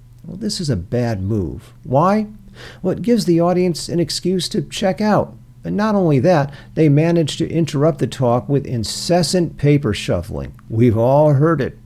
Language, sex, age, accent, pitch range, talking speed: English, male, 50-69, American, 120-155 Hz, 175 wpm